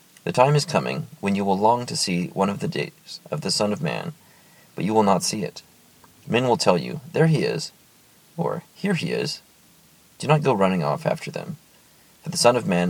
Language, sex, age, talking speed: English, male, 30-49, 225 wpm